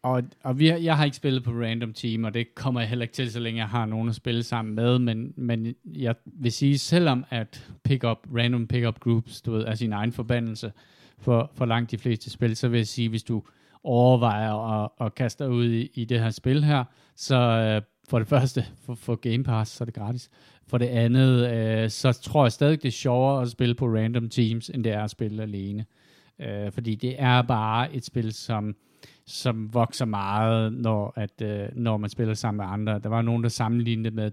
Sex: male